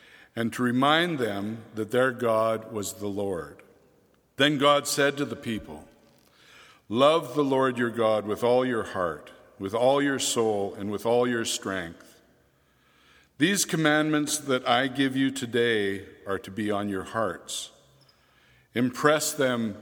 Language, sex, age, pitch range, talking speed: English, male, 60-79, 105-135 Hz, 150 wpm